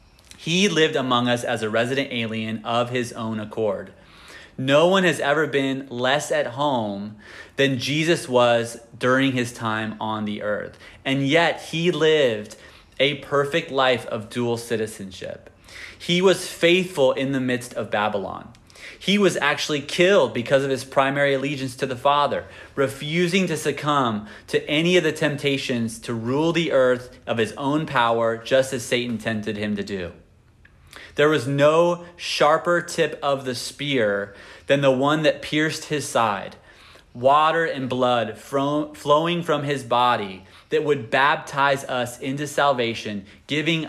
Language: English